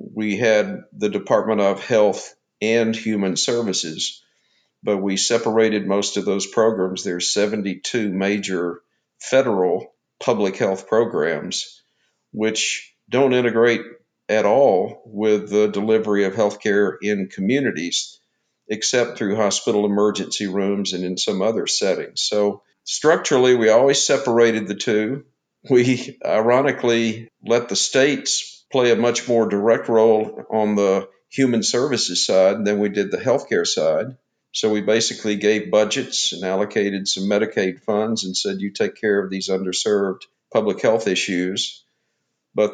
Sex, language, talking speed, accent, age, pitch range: male, English, 135 wpm, American, 50-69, 100-115 Hz